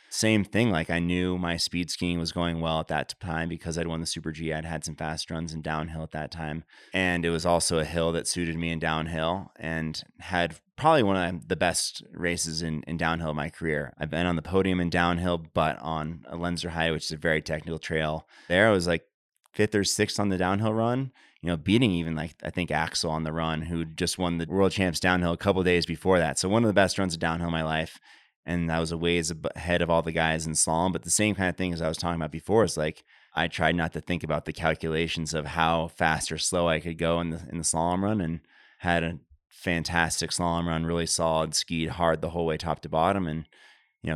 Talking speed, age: 250 wpm, 20-39